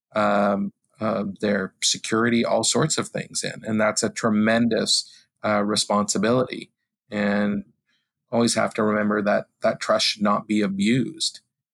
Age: 40-59